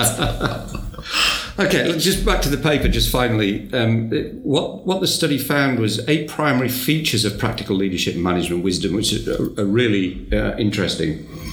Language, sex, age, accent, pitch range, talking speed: English, male, 50-69, British, 95-125 Hz, 150 wpm